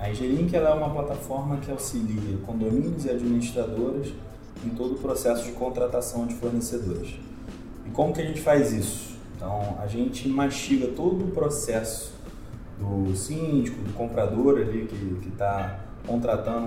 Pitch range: 110-135 Hz